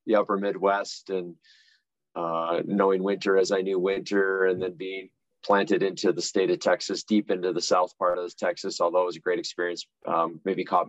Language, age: English, 30-49